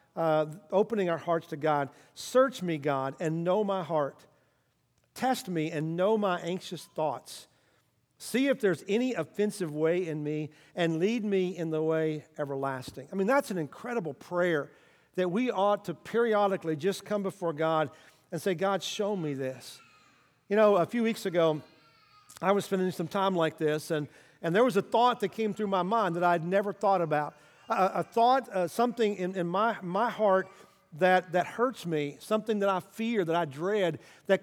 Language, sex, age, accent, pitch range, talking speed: English, male, 50-69, American, 160-210 Hz, 180 wpm